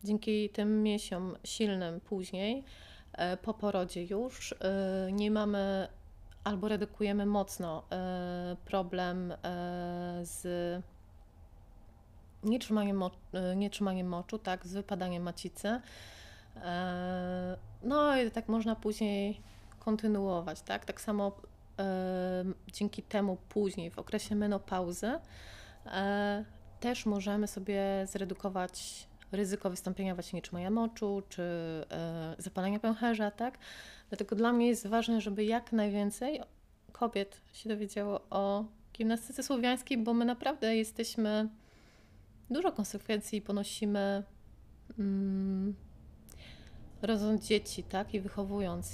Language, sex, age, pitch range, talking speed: Polish, female, 30-49, 185-215 Hz, 100 wpm